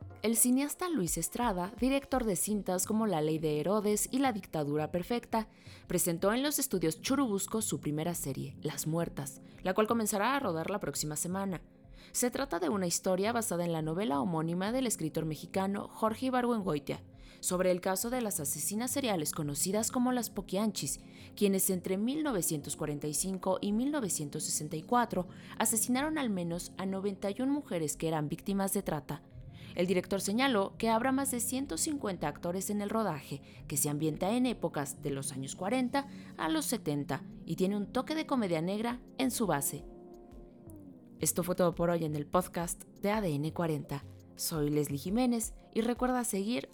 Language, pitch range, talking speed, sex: Spanish, 155-230 Hz, 165 wpm, female